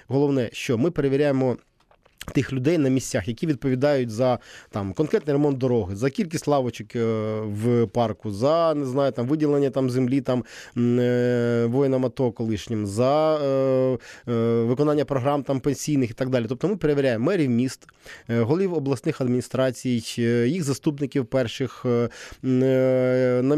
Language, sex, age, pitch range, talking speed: Ukrainian, male, 20-39, 125-145 Hz, 135 wpm